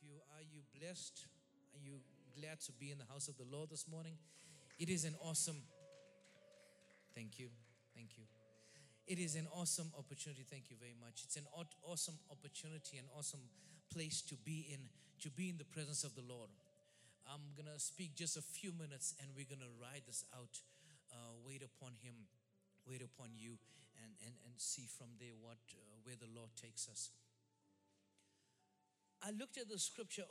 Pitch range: 135-165 Hz